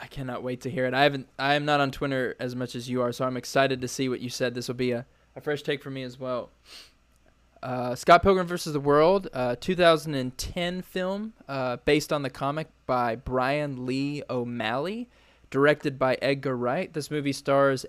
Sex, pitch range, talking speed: male, 120-145 Hz, 210 wpm